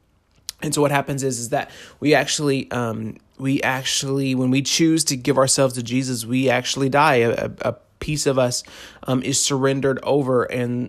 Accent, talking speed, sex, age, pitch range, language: American, 180 wpm, male, 30-49, 120-140 Hz, English